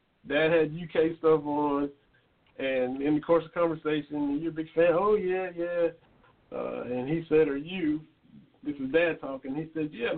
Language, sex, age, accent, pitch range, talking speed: English, male, 50-69, American, 155-220 Hz, 185 wpm